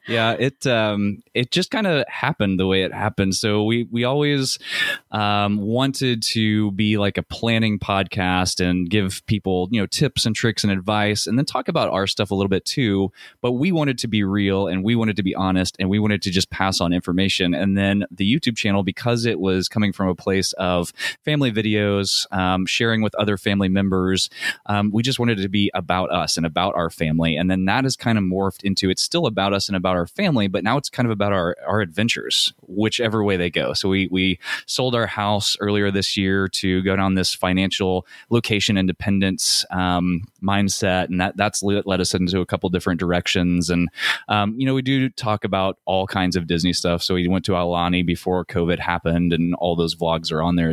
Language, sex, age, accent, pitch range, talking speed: English, male, 20-39, American, 90-105 Hz, 215 wpm